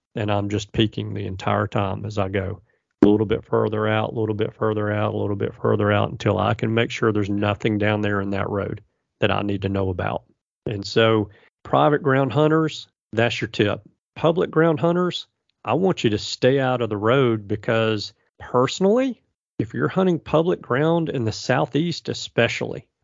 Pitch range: 110-145 Hz